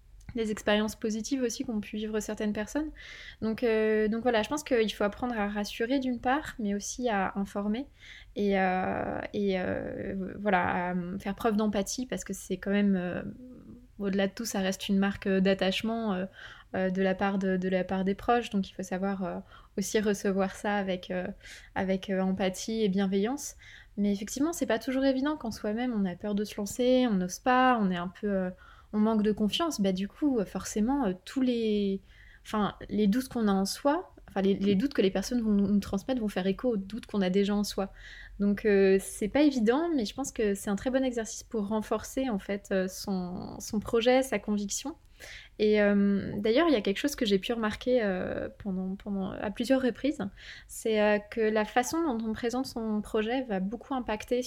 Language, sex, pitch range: French, female, 200-240 Hz